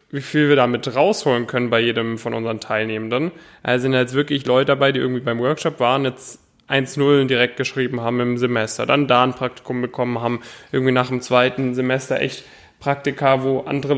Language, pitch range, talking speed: German, 125-145 Hz, 190 wpm